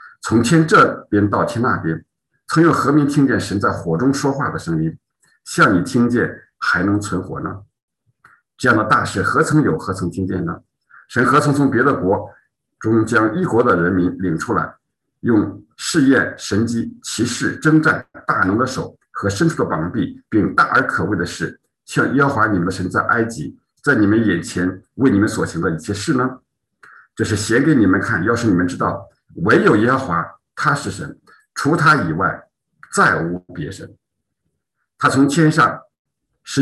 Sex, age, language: male, 50-69, Chinese